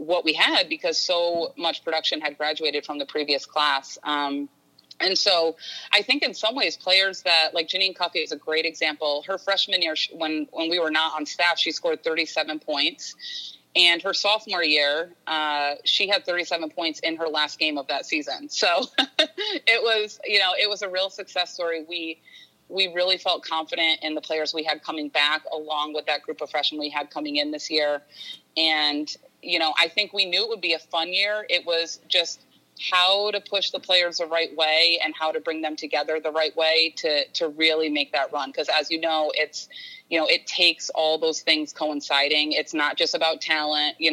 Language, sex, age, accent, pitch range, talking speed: English, female, 30-49, American, 150-180 Hz, 210 wpm